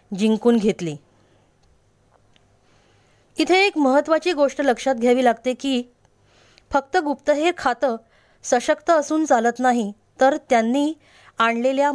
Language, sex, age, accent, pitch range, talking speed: Marathi, female, 20-39, native, 220-290 Hz, 100 wpm